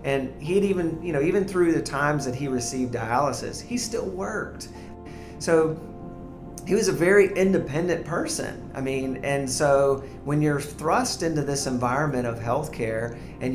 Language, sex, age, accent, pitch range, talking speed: English, male, 40-59, American, 120-140 Hz, 160 wpm